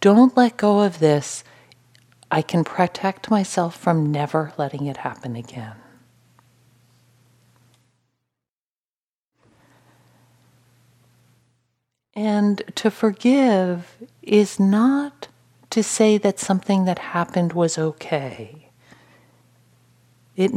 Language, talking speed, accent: English, 85 wpm, American